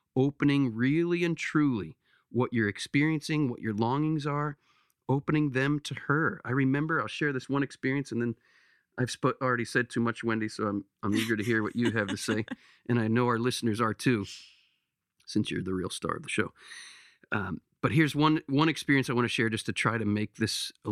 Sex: male